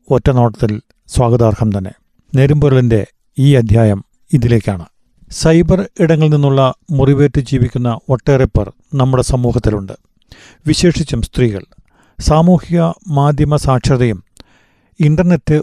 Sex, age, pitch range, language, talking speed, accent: male, 40-59, 120-150 Hz, Malayalam, 80 wpm, native